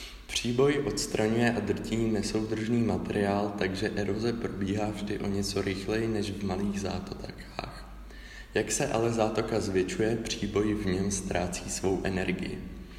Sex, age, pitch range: male, 20-39, 100-110 Hz